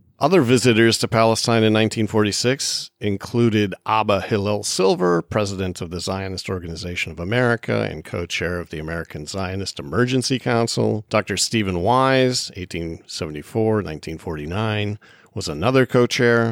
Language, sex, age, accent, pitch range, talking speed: English, male, 50-69, American, 95-120 Hz, 115 wpm